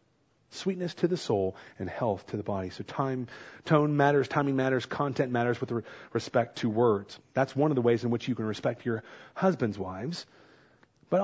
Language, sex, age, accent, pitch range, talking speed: English, male, 40-59, American, 145-230 Hz, 185 wpm